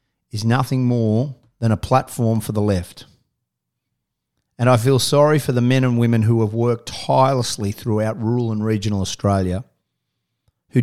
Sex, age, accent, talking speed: male, 40-59, Australian, 155 wpm